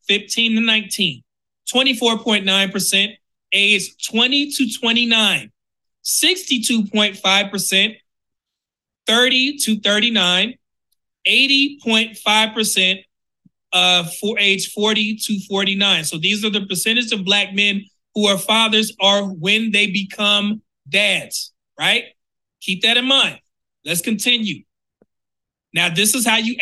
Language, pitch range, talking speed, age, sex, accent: English, 195-230 Hz, 105 wpm, 30-49, male, American